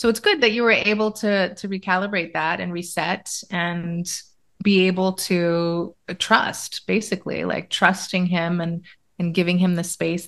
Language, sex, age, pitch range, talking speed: English, female, 30-49, 175-205 Hz, 165 wpm